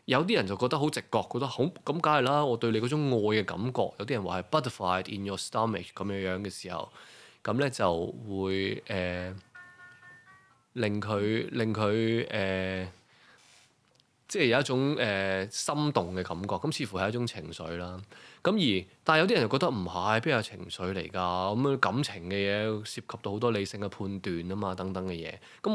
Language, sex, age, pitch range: Chinese, male, 20-39, 95-130 Hz